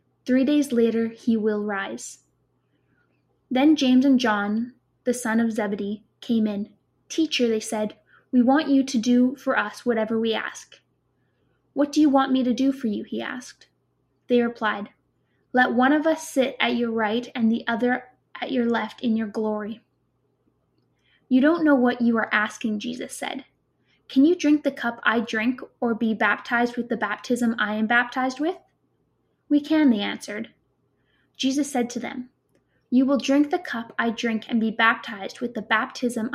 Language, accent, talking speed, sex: English, American, 175 wpm, female